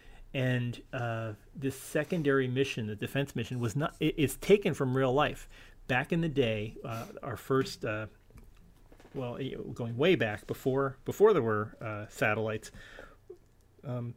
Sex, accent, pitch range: male, American, 110-135 Hz